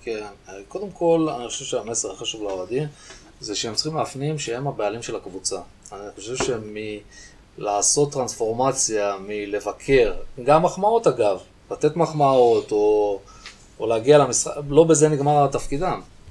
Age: 20-39